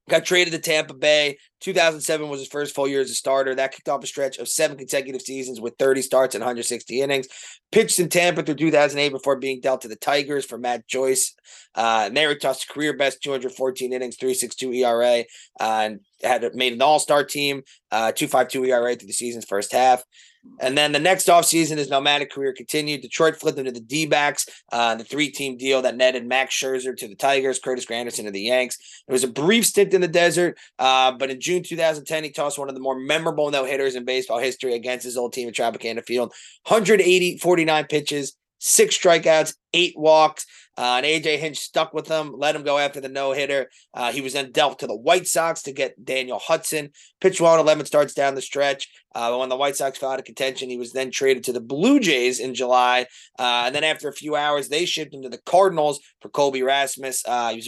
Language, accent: English, American